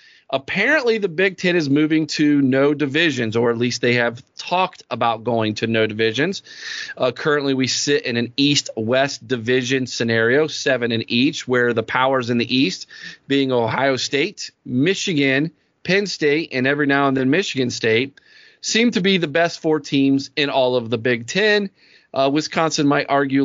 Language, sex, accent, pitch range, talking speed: English, male, American, 125-165 Hz, 175 wpm